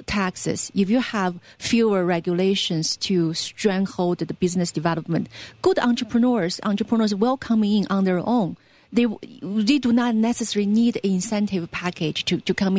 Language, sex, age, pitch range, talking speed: English, female, 40-59, 180-230 Hz, 150 wpm